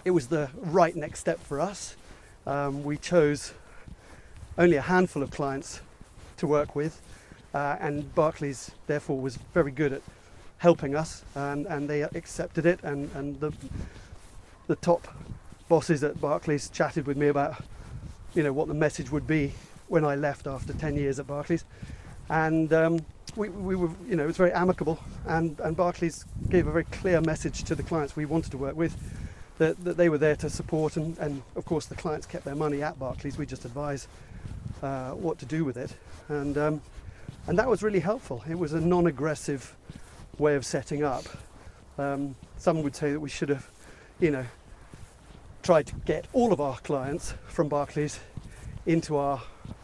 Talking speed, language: 180 wpm, English